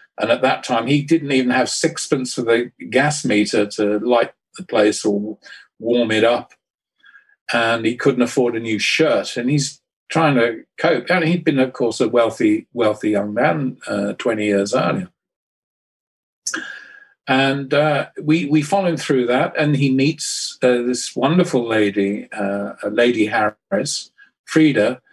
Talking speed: 160 wpm